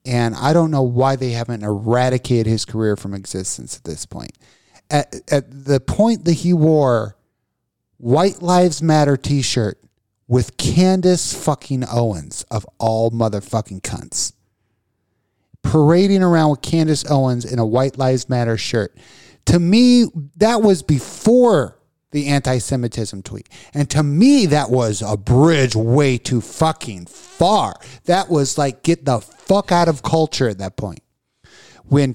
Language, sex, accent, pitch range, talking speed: English, male, American, 120-175 Hz, 145 wpm